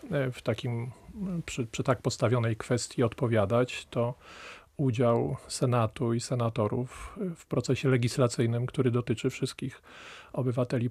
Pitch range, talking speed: 115-135 Hz, 110 wpm